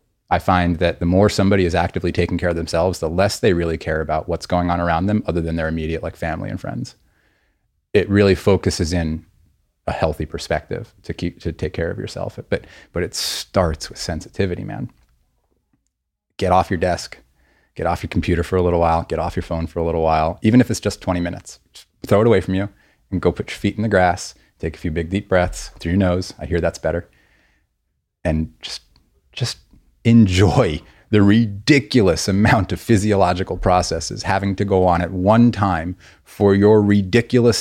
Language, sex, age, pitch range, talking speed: English, male, 30-49, 85-100 Hz, 200 wpm